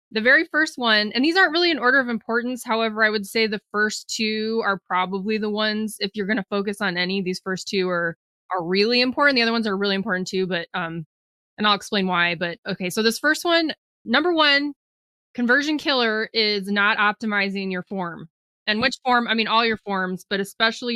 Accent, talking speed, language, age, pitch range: American, 215 wpm, English, 20-39, 190-240 Hz